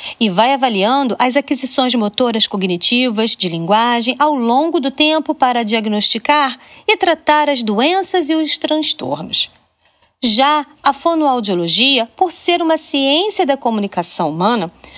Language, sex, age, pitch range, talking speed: Portuguese, female, 40-59, 230-320 Hz, 130 wpm